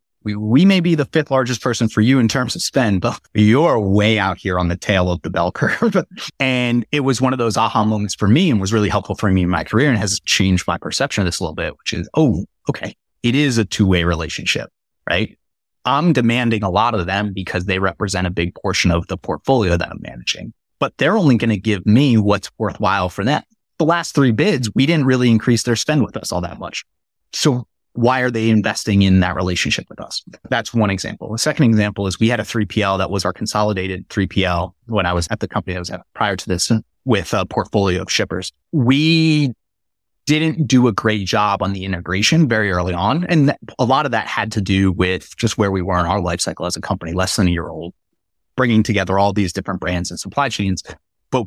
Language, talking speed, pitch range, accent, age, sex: English, 230 wpm, 95-120 Hz, American, 30-49, male